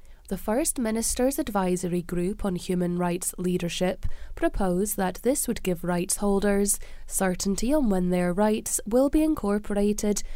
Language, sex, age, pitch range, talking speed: English, female, 20-39, 180-235 Hz, 140 wpm